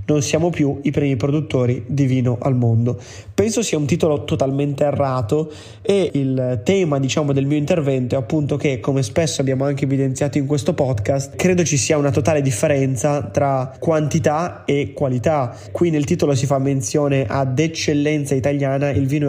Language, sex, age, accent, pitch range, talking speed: Italian, male, 20-39, native, 135-150 Hz, 170 wpm